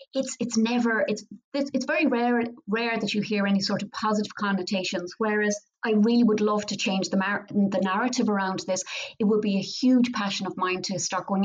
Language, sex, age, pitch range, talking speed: English, female, 30-49, 185-220 Hz, 215 wpm